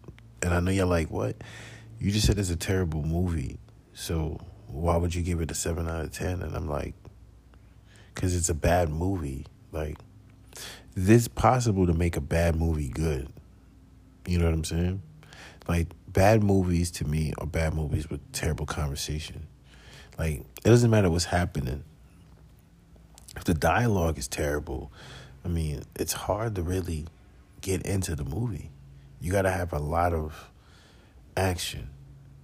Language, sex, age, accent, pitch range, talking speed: English, male, 40-59, American, 75-95 Hz, 155 wpm